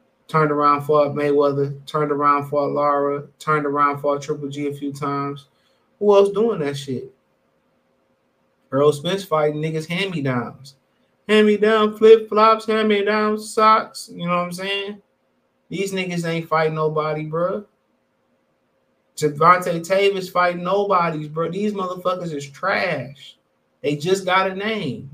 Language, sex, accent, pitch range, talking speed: English, male, American, 150-200 Hz, 150 wpm